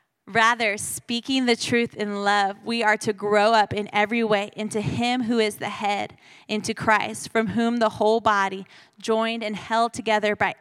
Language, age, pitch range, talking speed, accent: English, 20-39, 195-230 Hz, 180 wpm, American